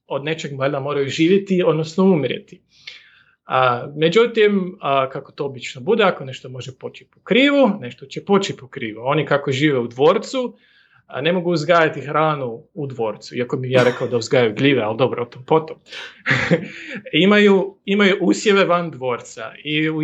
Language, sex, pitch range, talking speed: Croatian, male, 130-180 Hz, 160 wpm